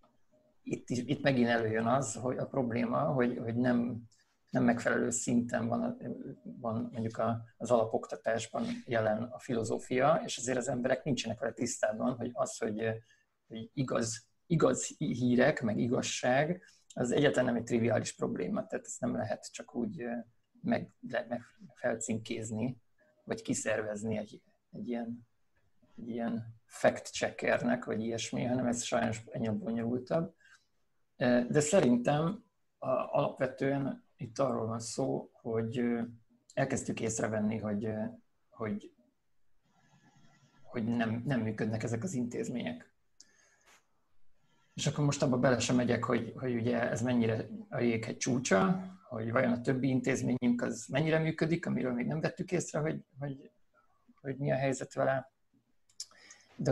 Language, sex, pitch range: Hungarian, male, 115-130 Hz